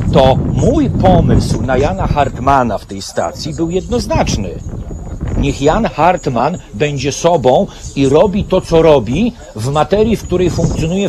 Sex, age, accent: male, 40-59, native